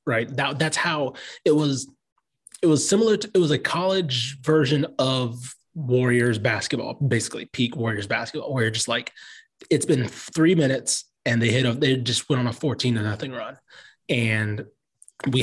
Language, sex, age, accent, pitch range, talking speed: English, male, 20-39, American, 115-150 Hz, 175 wpm